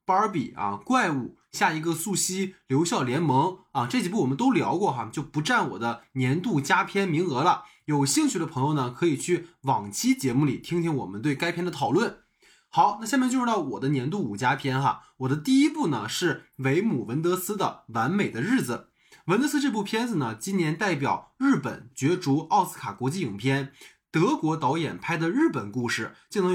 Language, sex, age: Chinese, male, 20-39